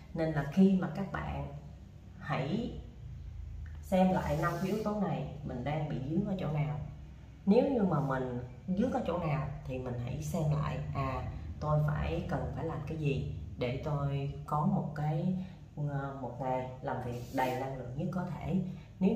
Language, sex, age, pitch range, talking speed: Vietnamese, female, 20-39, 130-170 Hz, 180 wpm